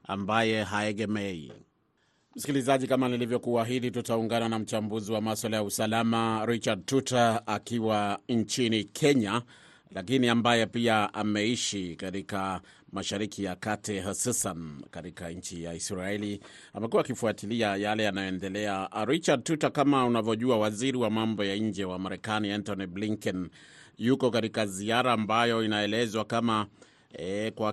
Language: Swahili